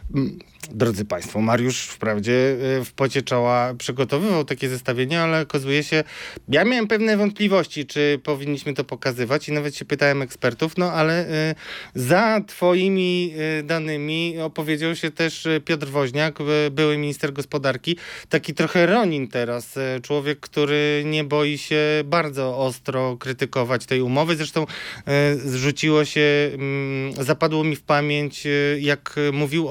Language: Polish